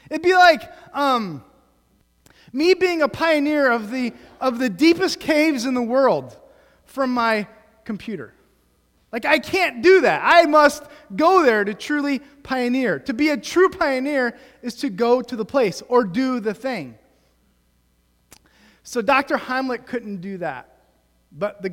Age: 30-49